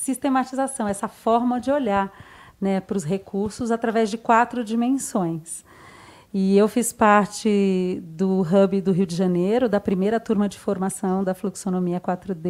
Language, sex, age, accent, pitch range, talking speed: Portuguese, female, 40-59, Brazilian, 195-245 Hz, 150 wpm